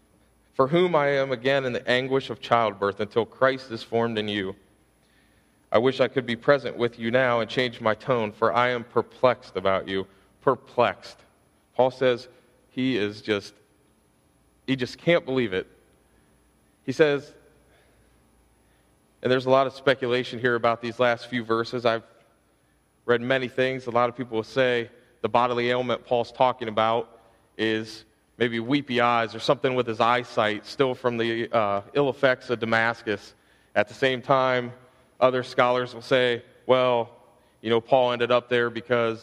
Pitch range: 110-130 Hz